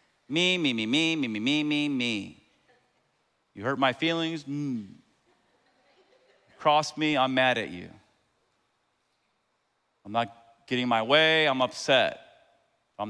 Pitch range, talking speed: 115-140 Hz, 135 wpm